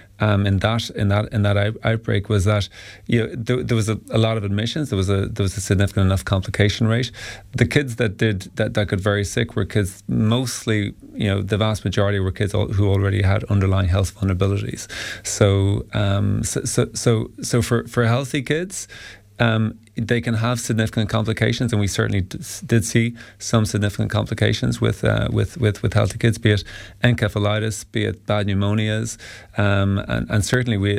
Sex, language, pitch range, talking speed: male, English, 100-115 Hz, 195 wpm